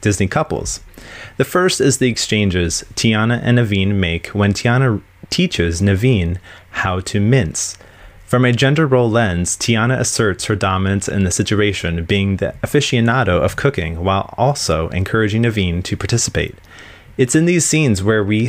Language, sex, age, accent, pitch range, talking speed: English, male, 30-49, American, 95-120 Hz, 155 wpm